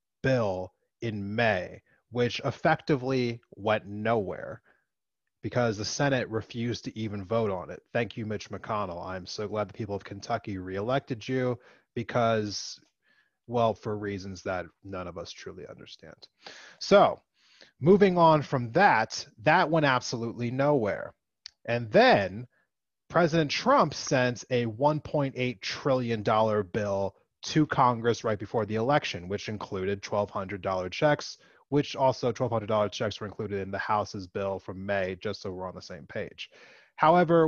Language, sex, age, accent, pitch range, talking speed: English, male, 30-49, American, 105-145 Hz, 140 wpm